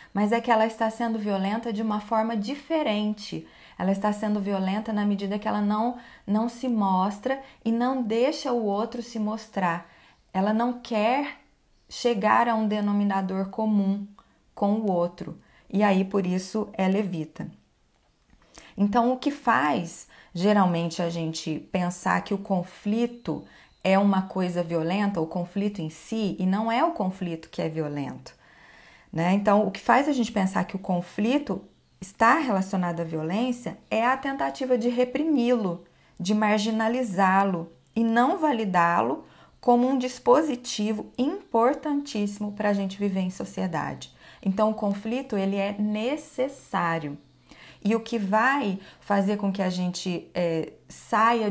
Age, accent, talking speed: 20-39, Brazilian, 145 wpm